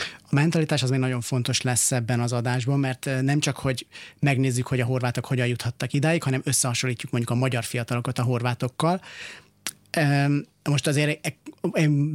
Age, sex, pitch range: 30-49, male, 125-145 Hz